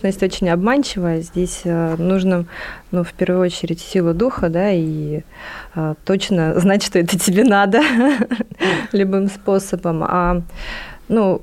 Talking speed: 130 wpm